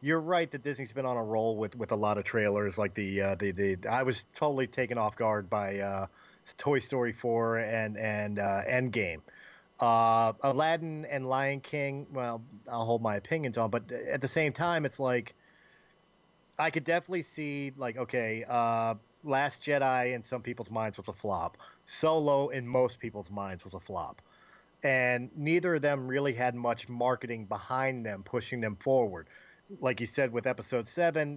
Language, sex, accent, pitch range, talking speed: English, male, American, 115-140 Hz, 180 wpm